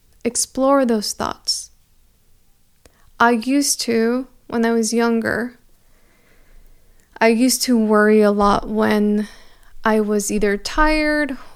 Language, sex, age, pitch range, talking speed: English, female, 20-39, 215-255 Hz, 110 wpm